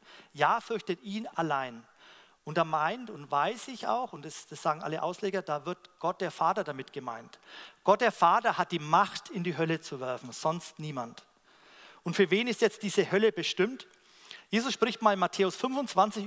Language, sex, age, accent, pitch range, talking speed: German, male, 40-59, German, 170-220 Hz, 190 wpm